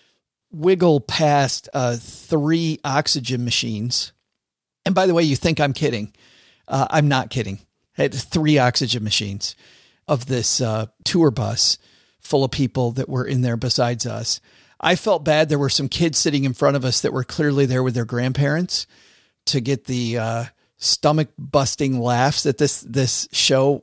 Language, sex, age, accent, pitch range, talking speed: English, male, 40-59, American, 125-160 Hz, 170 wpm